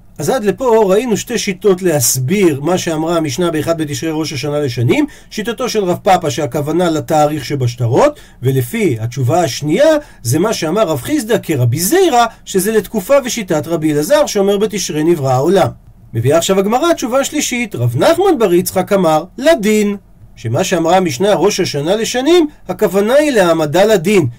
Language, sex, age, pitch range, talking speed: Hebrew, male, 40-59, 155-225 Hz, 155 wpm